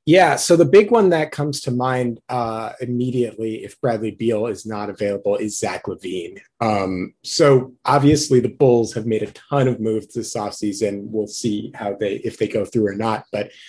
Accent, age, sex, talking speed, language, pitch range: American, 30-49, male, 195 wpm, English, 110-140 Hz